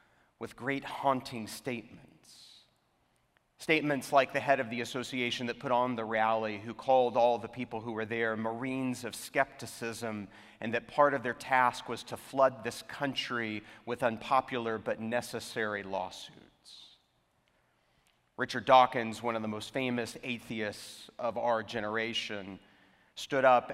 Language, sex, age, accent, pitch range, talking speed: English, male, 40-59, American, 110-135 Hz, 140 wpm